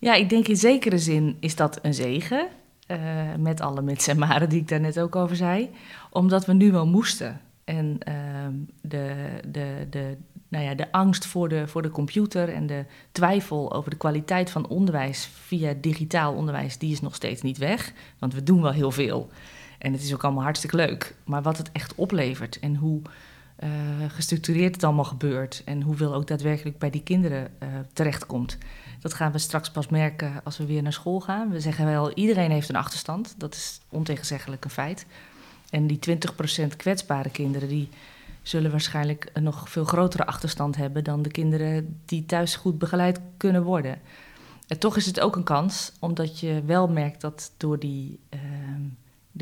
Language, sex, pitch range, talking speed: Dutch, female, 145-170 Hz, 190 wpm